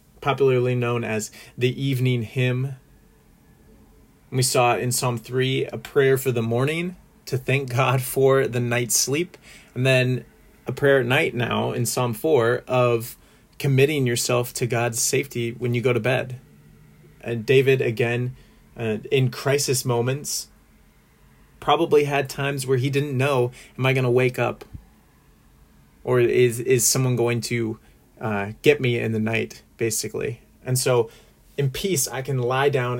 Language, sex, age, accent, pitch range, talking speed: English, male, 30-49, American, 120-135 Hz, 155 wpm